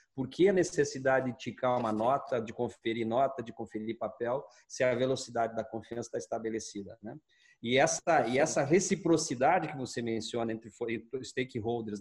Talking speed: 155 wpm